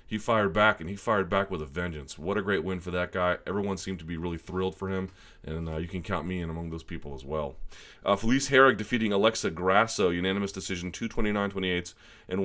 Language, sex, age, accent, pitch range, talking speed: English, male, 30-49, American, 90-110 Hz, 225 wpm